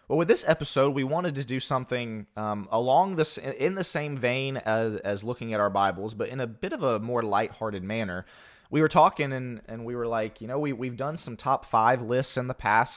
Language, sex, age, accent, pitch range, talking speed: English, male, 20-39, American, 100-130 Hz, 235 wpm